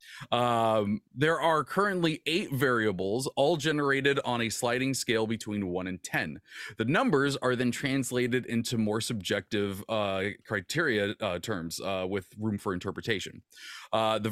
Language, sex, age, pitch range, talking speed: English, male, 30-49, 105-140 Hz, 145 wpm